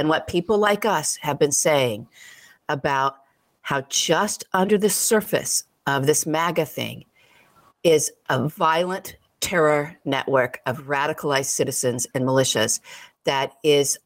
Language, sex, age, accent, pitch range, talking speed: English, female, 50-69, American, 145-200 Hz, 130 wpm